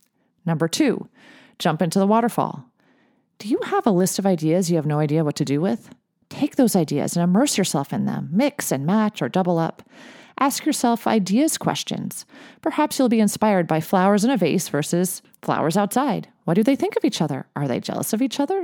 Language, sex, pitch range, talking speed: English, female, 175-265 Hz, 205 wpm